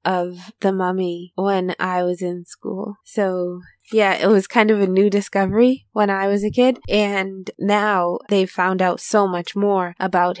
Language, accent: English, American